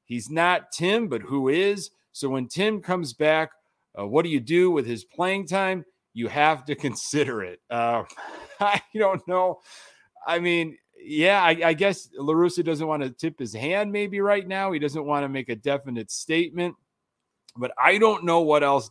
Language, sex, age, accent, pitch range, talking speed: English, male, 40-59, American, 120-170 Hz, 185 wpm